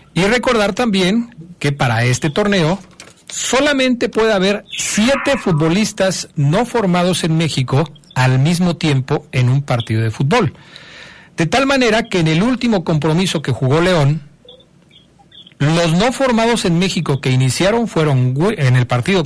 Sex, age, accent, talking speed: male, 50-69, Mexican, 145 wpm